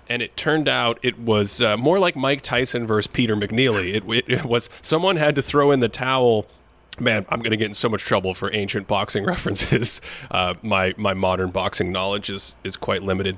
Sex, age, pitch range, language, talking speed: male, 30-49, 100-120 Hz, English, 215 wpm